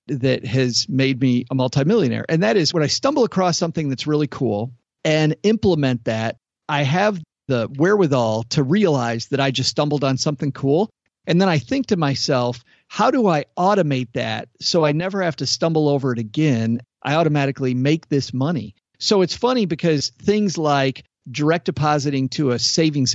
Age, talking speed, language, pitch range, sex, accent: 50-69, 180 wpm, English, 125-155 Hz, male, American